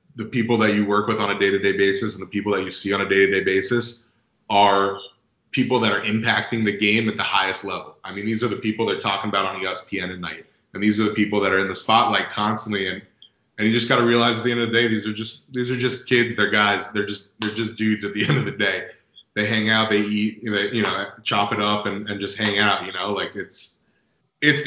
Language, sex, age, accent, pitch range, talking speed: English, male, 30-49, American, 105-125 Hz, 265 wpm